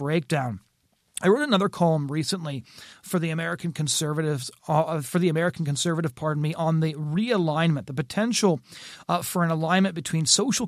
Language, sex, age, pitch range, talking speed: English, male, 30-49, 150-175 Hz, 155 wpm